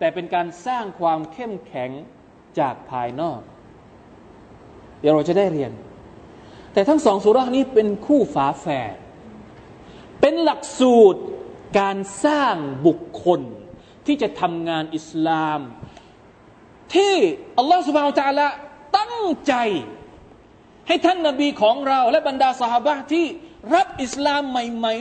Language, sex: Thai, male